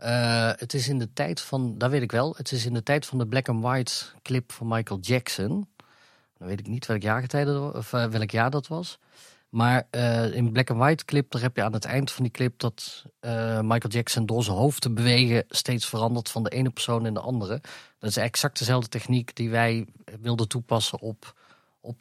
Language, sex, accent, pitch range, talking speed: Dutch, male, Dutch, 110-130 Hz, 230 wpm